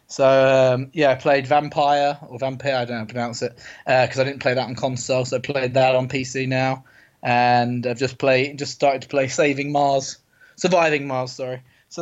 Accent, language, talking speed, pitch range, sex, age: British, English, 220 wpm, 125-145 Hz, male, 20-39